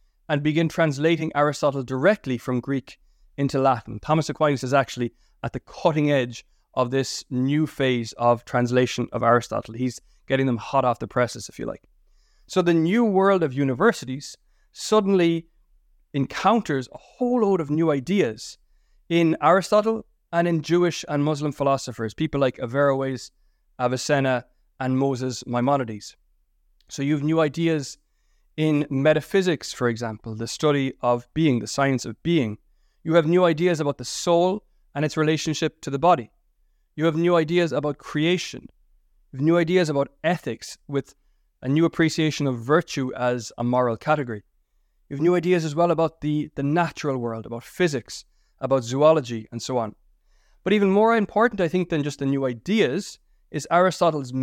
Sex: male